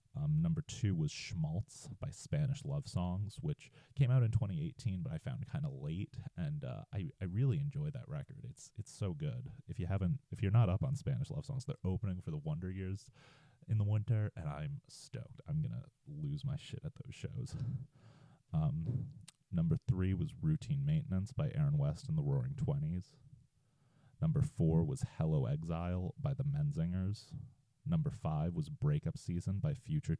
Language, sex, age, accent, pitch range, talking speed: English, male, 30-49, American, 125-150 Hz, 180 wpm